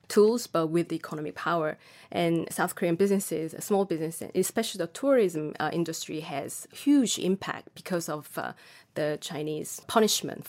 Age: 20-39